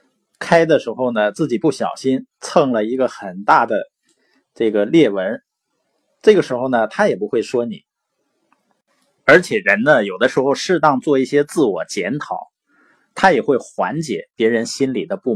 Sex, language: male, Chinese